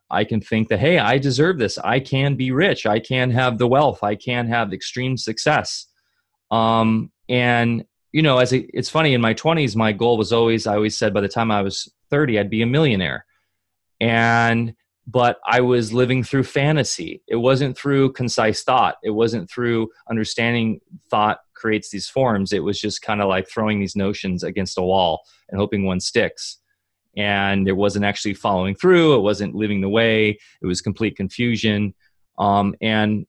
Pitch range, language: 100-120 Hz, English